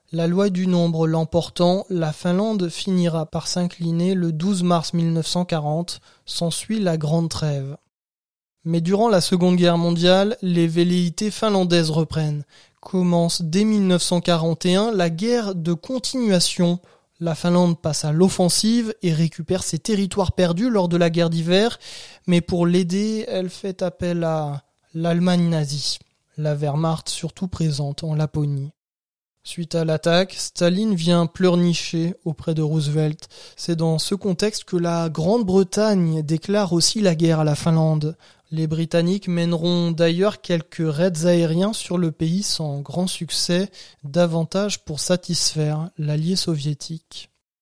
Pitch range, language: 160-185 Hz, French